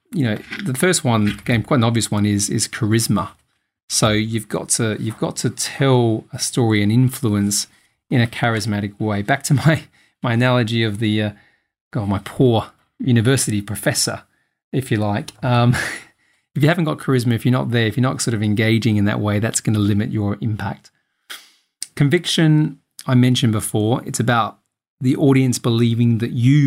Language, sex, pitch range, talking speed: English, male, 110-130 Hz, 180 wpm